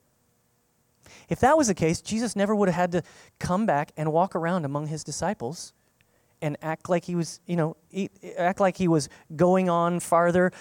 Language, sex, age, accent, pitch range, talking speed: English, male, 30-49, American, 145-185 Hz, 185 wpm